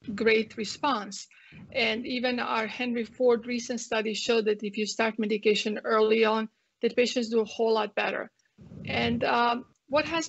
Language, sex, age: English, female, 40-59